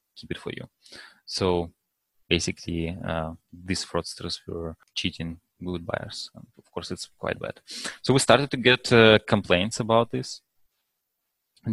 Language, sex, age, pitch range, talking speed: English, male, 20-39, 90-105 Hz, 150 wpm